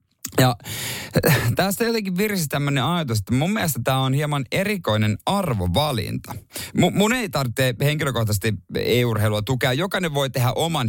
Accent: native